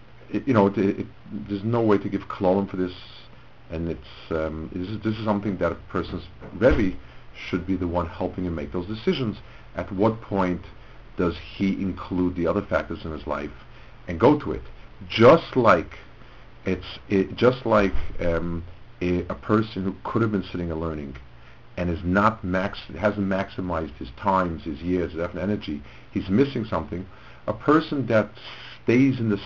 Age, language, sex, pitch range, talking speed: 60-79, English, male, 85-110 Hz, 175 wpm